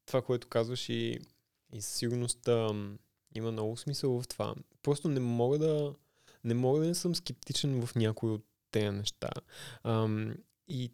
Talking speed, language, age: 150 wpm, Bulgarian, 20-39